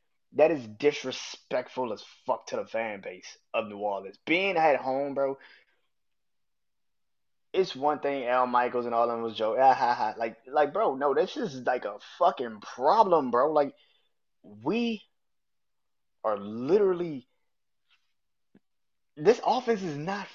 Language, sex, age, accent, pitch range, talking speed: English, male, 20-39, American, 120-175 Hz, 135 wpm